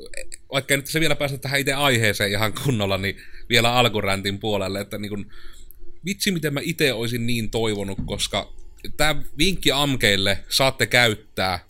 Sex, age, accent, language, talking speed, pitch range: male, 30-49, native, Finnish, 155 wpm, 95-120 Hz